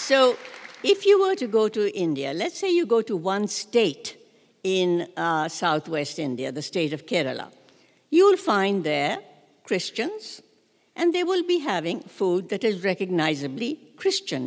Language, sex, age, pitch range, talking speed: English, female, 60-79, 175-245 Hz, 155 wpm